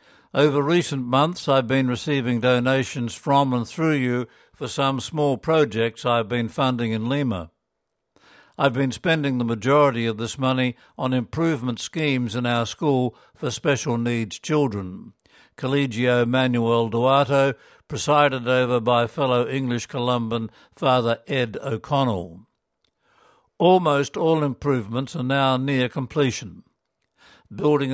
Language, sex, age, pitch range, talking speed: English, male, 60-79, 120-145 Hz, 125 wpm